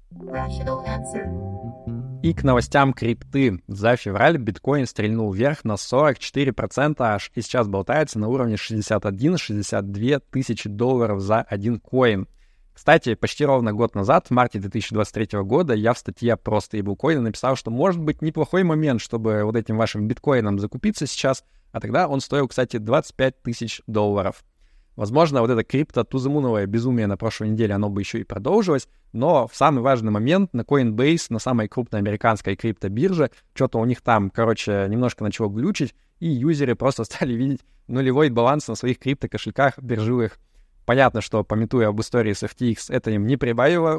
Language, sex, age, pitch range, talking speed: Russian, male, 20-39, 105-135 Hz, 155 wpm